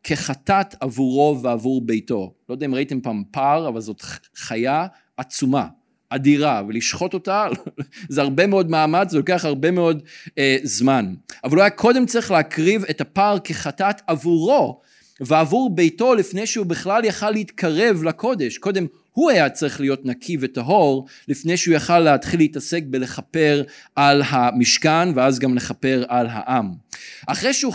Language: Hebrew